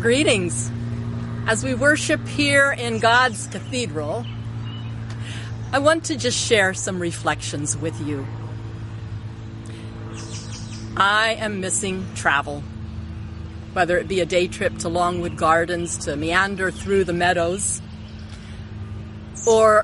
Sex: female